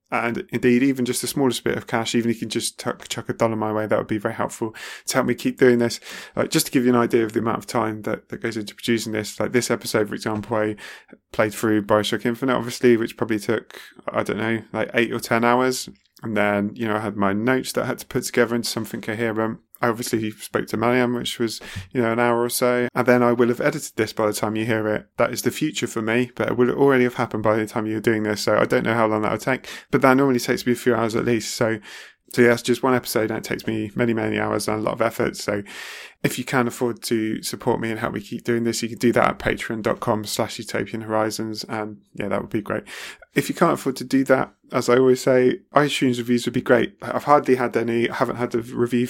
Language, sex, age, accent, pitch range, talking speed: English, male, 20-39, British, 110-125 Hz, 275 wpm